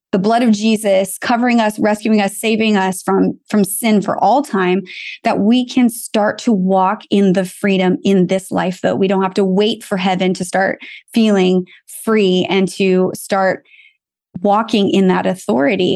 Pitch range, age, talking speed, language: 190-215 Hz, 20-39, 175 wpm, English